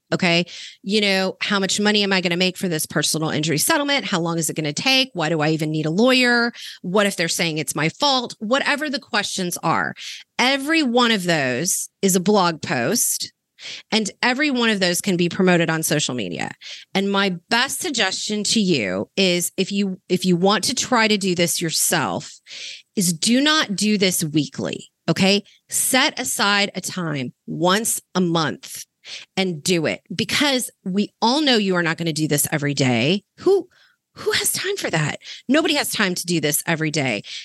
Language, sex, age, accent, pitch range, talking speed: English, female, 30-49, American, 170-225 Hz, 195 wpm